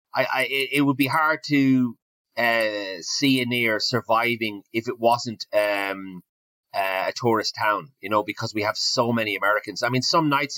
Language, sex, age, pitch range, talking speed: English, male, 30-49, 105-130 Hz, 180 wpm